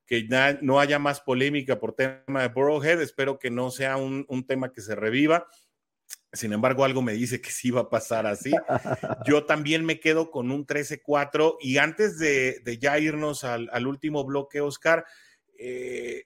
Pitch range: 120-150 Hz